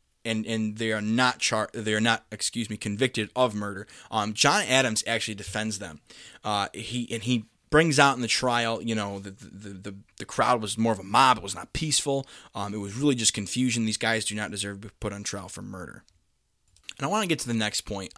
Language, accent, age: English, American, 20-39